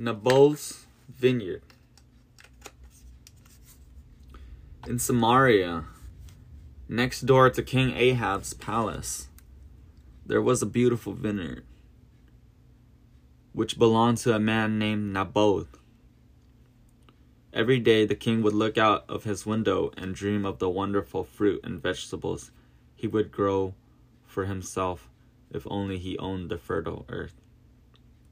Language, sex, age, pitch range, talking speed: English, male, 20-39, 90-115 Hz, 110 wpm